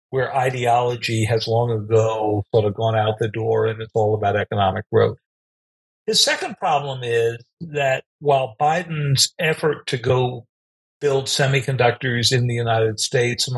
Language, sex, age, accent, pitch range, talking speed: English, male, 50-69, American, 110-140 Hz, 150 wpm